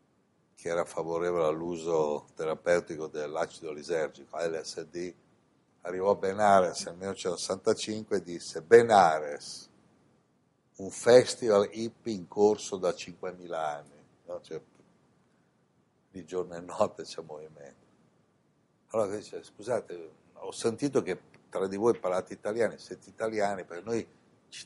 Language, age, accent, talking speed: Italian, 60-79, native, 115 wpm